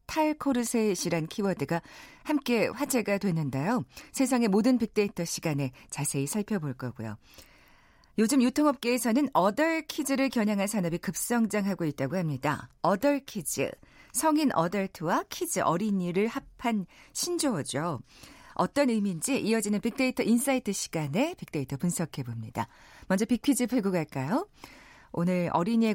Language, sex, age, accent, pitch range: Korean, female, 40-59, native, 170-255 Hz